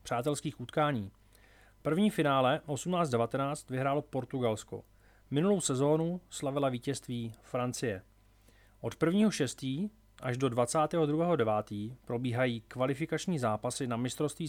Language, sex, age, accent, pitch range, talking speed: Czech, male, 30-49, native, 115-150 Hz, 95 wpm